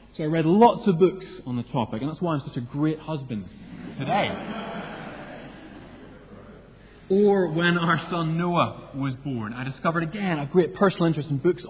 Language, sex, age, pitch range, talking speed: English, male, 30-49, 120-165 Hz, 175 wpm